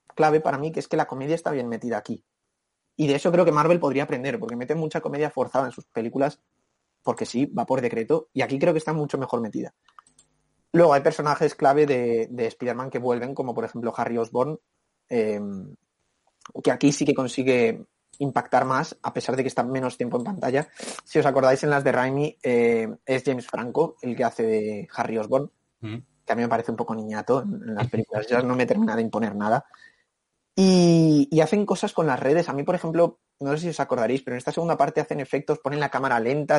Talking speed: 220 wpm